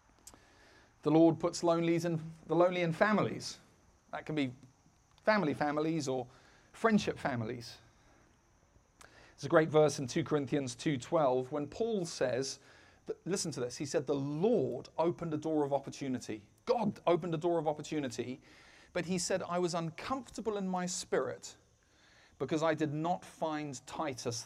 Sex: male